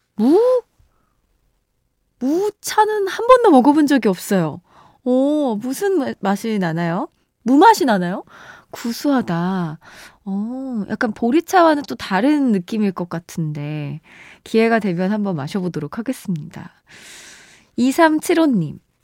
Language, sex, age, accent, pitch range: Korean, female, 20-39, native, 185-290 Hz